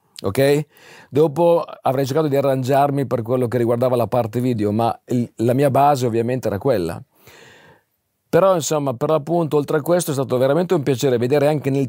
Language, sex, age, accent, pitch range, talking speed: Italian, male, 50-69, native, 115-155 Hz, 180 wpm